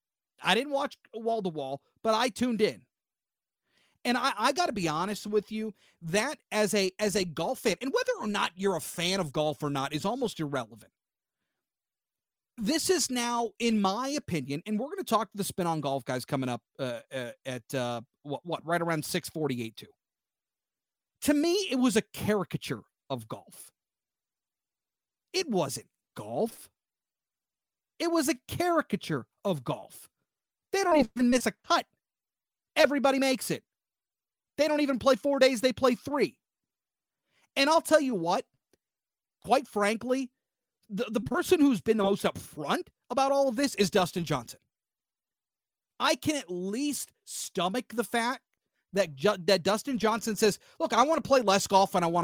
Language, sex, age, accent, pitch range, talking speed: English, male, 40-59, American, 175-265 Hz, 165 wpm